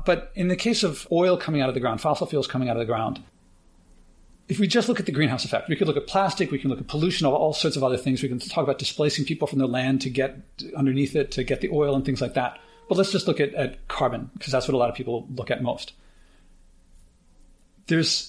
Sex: male